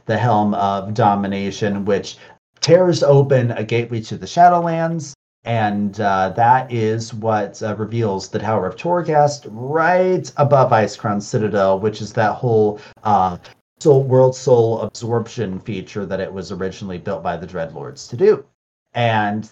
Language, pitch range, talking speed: English, 105-145 Hz, 150 wpm